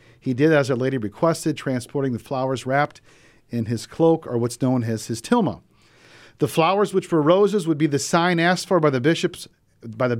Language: English